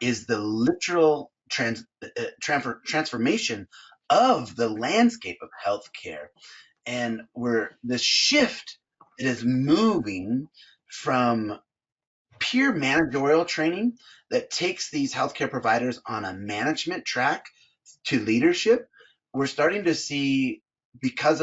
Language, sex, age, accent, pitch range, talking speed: English, male, 30-49, American, 115-175 Hz, 110 wpm